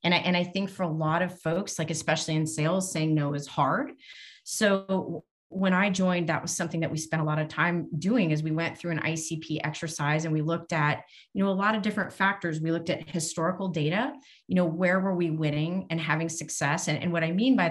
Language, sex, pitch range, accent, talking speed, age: English, female, 155-180 Hz, American, 240 wpm, 30-49